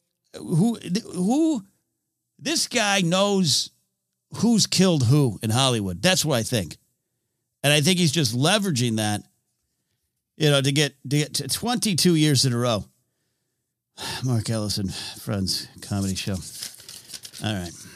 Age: 50-69